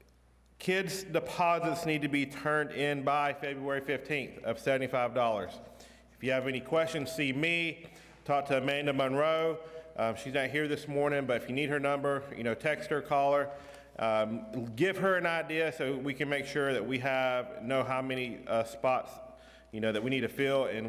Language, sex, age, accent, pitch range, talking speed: English, male, 40-59, American, 125-155 Hz, 190 wpm